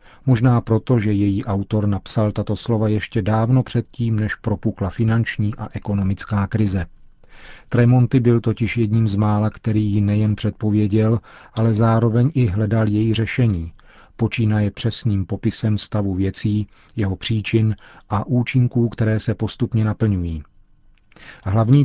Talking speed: 130 wpm